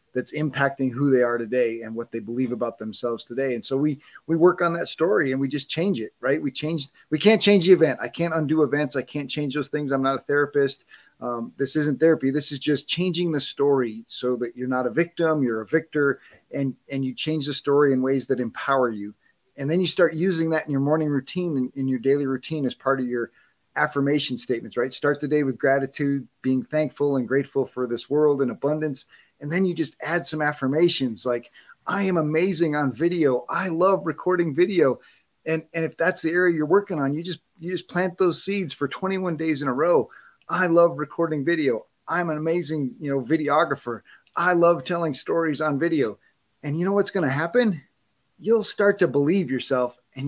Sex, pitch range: male, 135-170 Hz